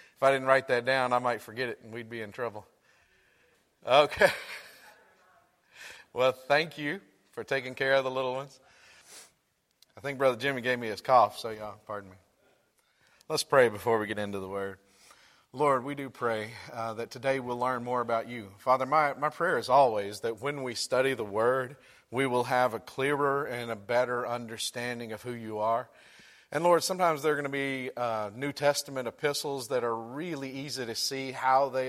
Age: 40-59